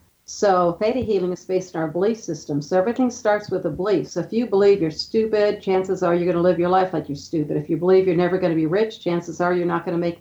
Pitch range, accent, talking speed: 170-195 Hz, American, 265 wpm